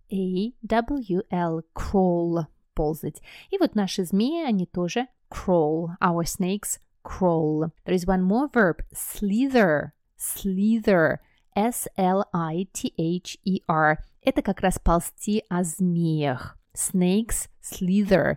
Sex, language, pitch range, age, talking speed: female, Russian, 170-215 Hz, 20-39, 95 wpm